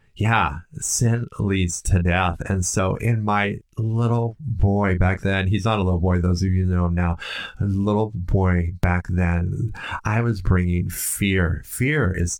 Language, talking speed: English, 170 wpm